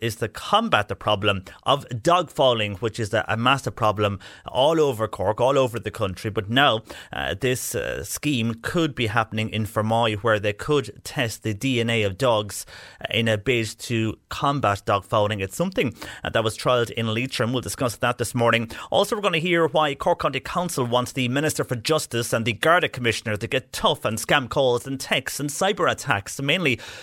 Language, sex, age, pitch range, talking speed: English, male, 30-49, 110-130 Hz, 200 wpm